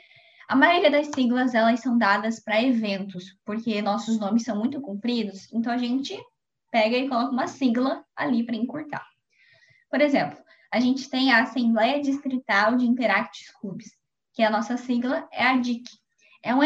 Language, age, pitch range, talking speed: Portuguese, 10-29, 215-260 Hz, 165 wpm